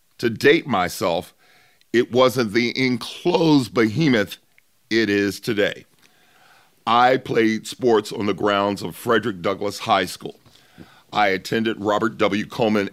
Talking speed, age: 125 wpm, 50-69